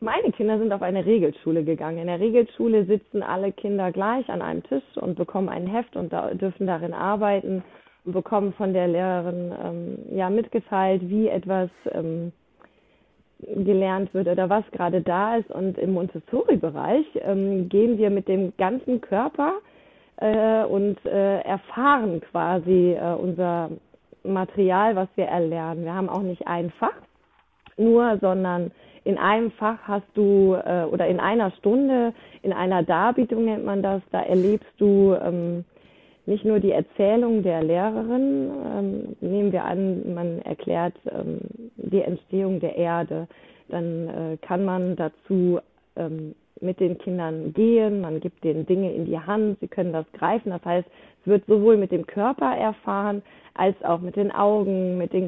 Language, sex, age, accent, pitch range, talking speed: German, female, 20-39, German, 175-210 Hz, 150 wpm